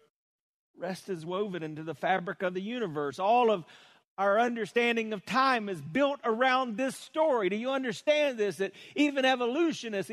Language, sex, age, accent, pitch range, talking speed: English, male, 50-69, American, 180-235 Hz, 160 wpm